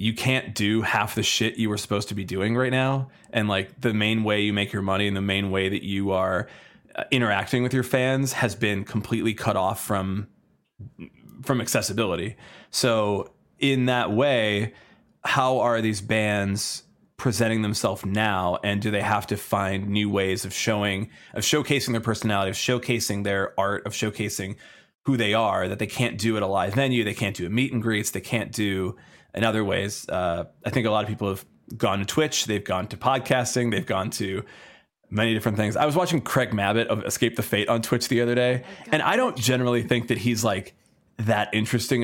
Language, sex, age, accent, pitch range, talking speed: English, male, 20-39, American, 100-125 Hz, 205 wpm